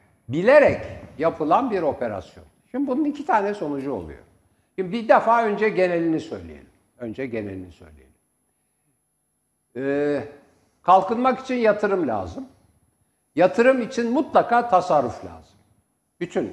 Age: 60-79